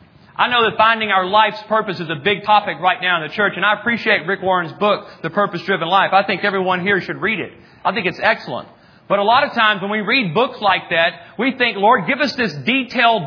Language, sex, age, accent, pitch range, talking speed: English, male, 40-59, American, 200-245 Hz, 250 wpm